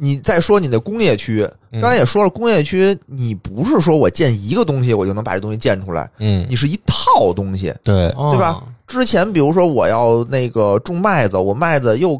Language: Chinese